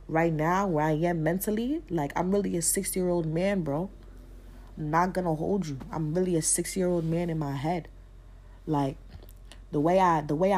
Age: 20-39